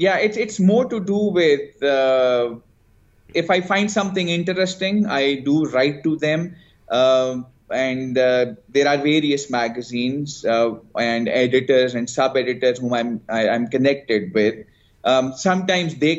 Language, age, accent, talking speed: English, 20-39, Indian, 135 wpm